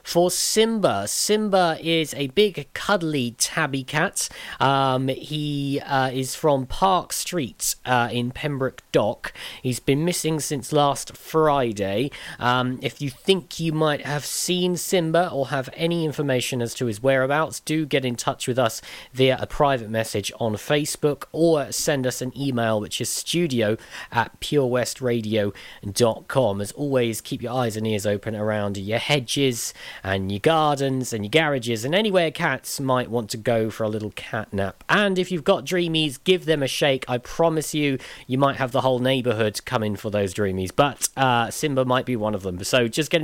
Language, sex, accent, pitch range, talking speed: English, male, British, 115-155 Hz, 180 wpm